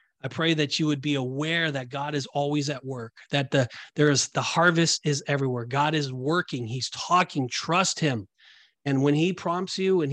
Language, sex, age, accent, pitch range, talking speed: English, male, 30-49, American, 135-175 Hz, 200 wpm